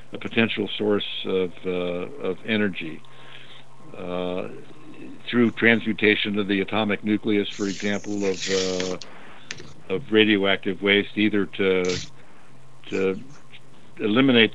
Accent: American